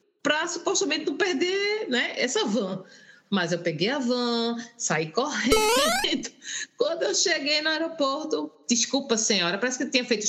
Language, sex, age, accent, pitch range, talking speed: Portuguese, female, 20-39, Brazilian, 210-310 Hz, 150 wpm